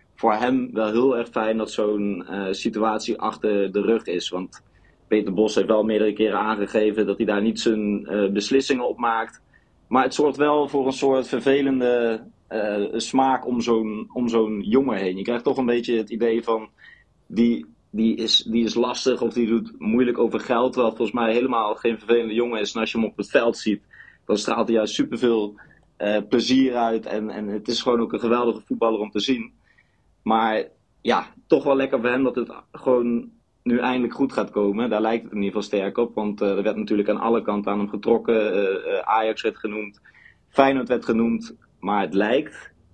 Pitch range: 105-120 Hz